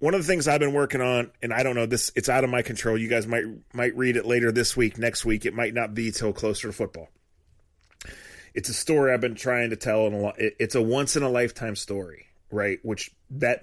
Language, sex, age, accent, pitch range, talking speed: English, male, 30-49, American, 95-120 Hz, 250 wpm